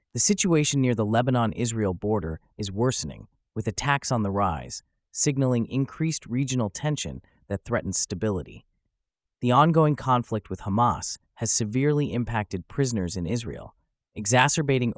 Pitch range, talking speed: 100-130 Hz, 130 wpm